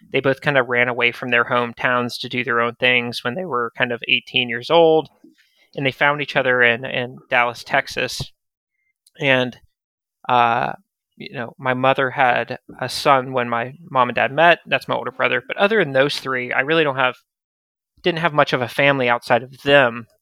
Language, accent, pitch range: English, American, 125-145 Hz